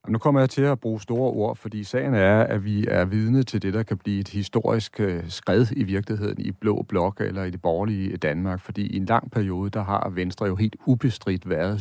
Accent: native